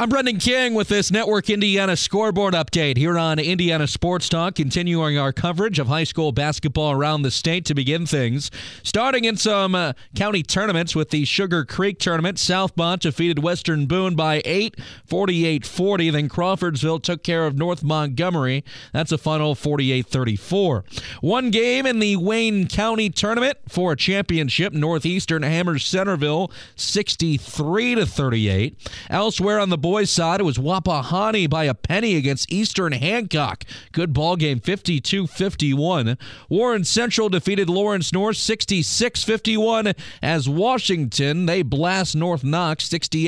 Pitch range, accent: 150-195 Hz, American